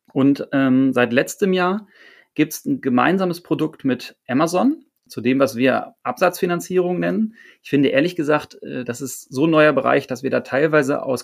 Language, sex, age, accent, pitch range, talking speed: German, male, 30-49, German, 125-165 Hz, 180 wpm